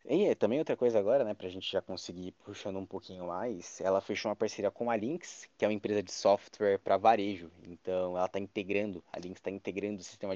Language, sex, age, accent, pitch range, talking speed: Portuguese, male, 20-39, Brazilian, 95-105 Hz, 235 wpm